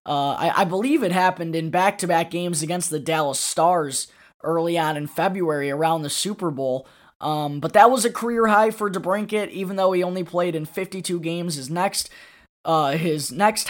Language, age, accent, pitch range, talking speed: English, 20-39, American, 165-205 Hz, 180 wpm